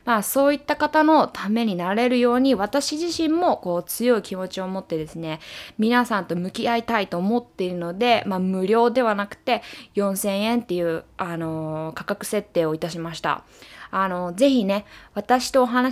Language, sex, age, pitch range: Japanese, female, 20-39, 175-245 Hz